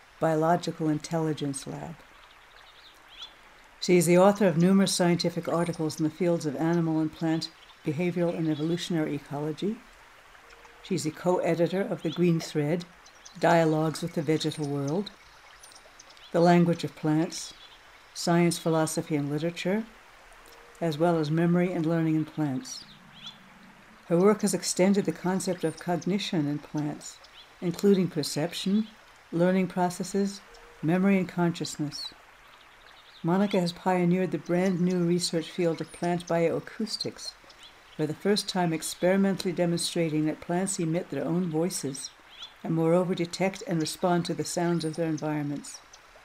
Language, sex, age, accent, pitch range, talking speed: English, female, 60-79, American, 160-180 Hz, 130 wpm